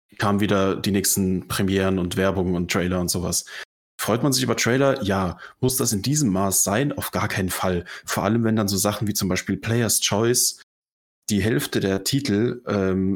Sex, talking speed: male, 195 wpm